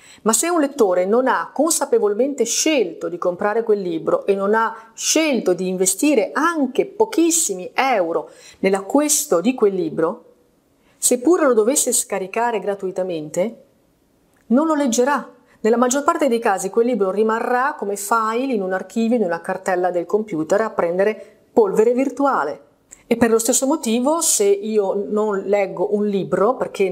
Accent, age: native, 40-59